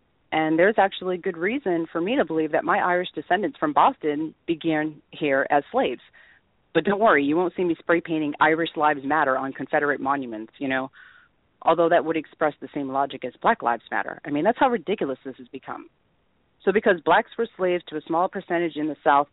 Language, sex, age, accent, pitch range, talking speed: English, female, 40-59, American, 150-190 Hz, 205 wpm